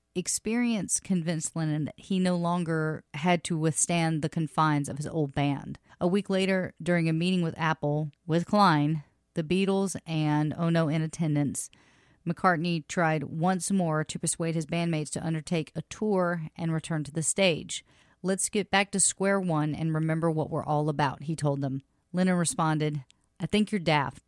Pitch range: 150-180 Hz